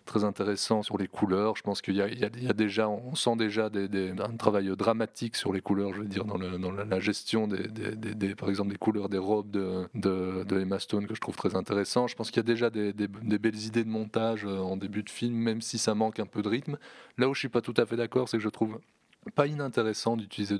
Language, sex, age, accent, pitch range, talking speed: French, male, 20-39, French, 105-120 Hz, 275 wpm